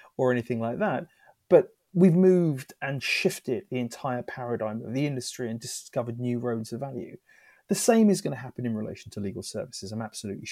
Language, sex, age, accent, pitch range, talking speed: English, male, 30-49, British, 120-155 Hz, 195 wpm